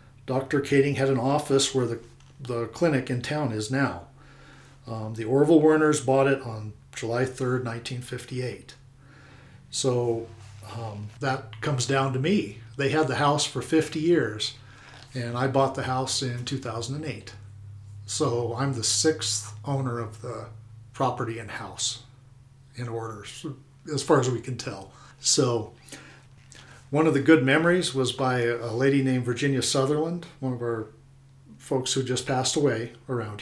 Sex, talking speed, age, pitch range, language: male, 150 wpm, 50-69, 120-140 Hz, English